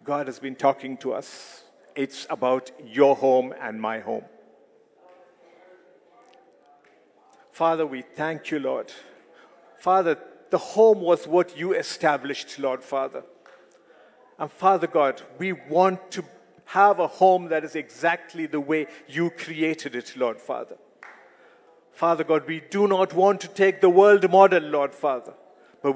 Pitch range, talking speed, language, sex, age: 150-190 Hz, 140 wpm, English, male, 50-69